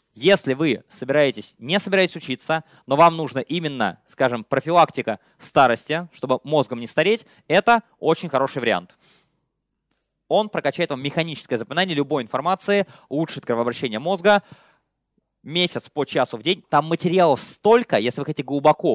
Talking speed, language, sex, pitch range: 135 wpm, Russian, male, 135-170 Hz